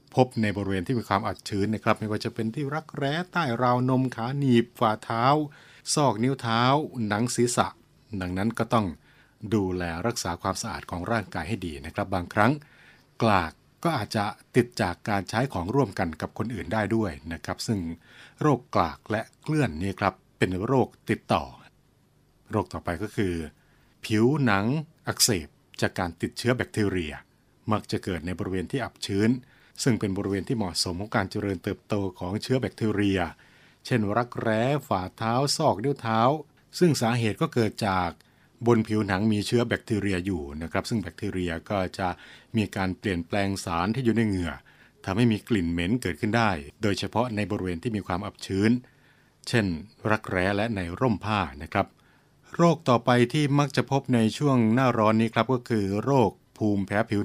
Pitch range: 95-125 Hz